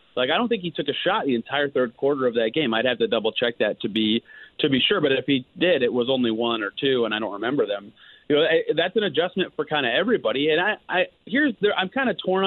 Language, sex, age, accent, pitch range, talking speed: English, male, 30-49, American, 125-175 Hz, 290 wpm